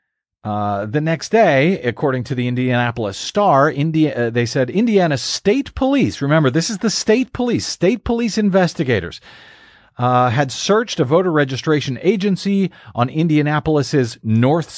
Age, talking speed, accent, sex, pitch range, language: 40-59, 140 wpm, American, male, 120-165 Hz, English